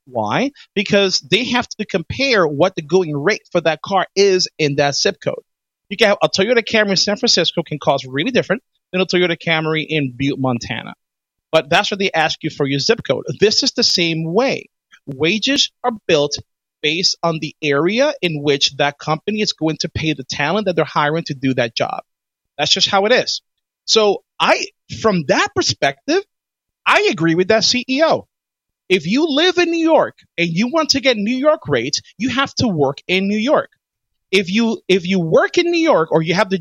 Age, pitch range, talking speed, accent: 30-49, 160-250 Hz, 205 wpm, American